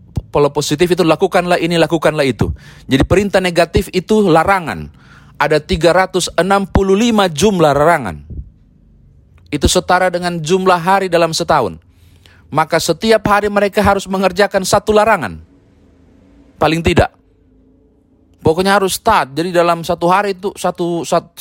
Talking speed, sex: 120 wpm, male